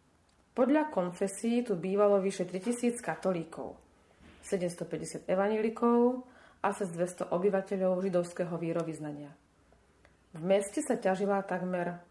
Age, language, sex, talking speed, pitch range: 30-49, Slovak, female, 95 wpm, 175-230 Hz